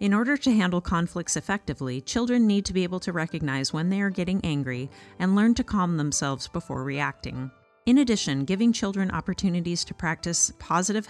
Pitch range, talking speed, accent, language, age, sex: 150-205 Hz, 180 wpm, American, English, 40-59, female